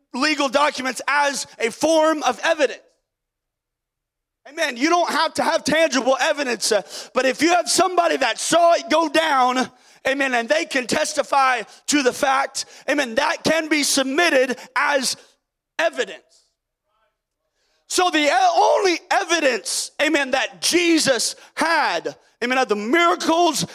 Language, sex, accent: English, male, American